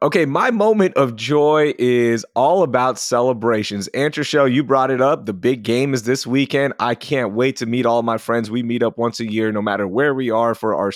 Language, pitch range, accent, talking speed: English, 120-155 Hz, American, 225 wpm